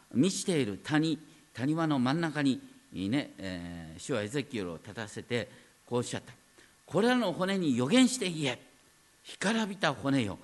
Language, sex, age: Japanese, male, 50-69